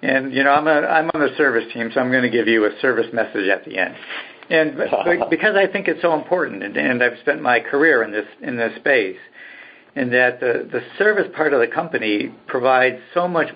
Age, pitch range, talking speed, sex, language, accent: 60-79, 115-145 Hz, 225 wpm, male, English, American